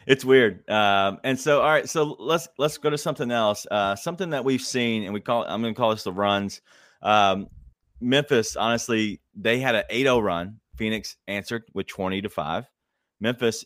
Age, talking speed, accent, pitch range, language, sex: 30-49, 190 wpm, American, 100-130 Hz, English, male